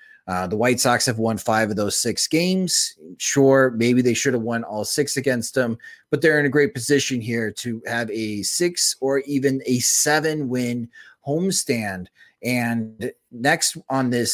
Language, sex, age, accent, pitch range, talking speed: English, male, 30-49, American, 115-140 Hz, 175 wpm